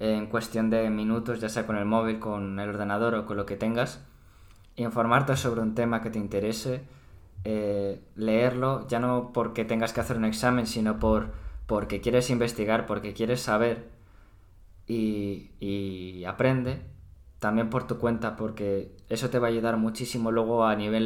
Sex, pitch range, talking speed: male, 105-115 Hz, 165 wpm